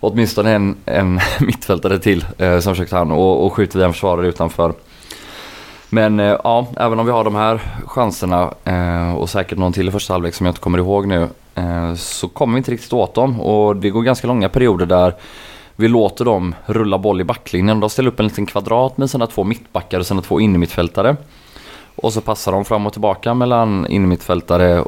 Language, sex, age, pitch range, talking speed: Swedish, male, 20-39, 90-110 Hz, 205 wpm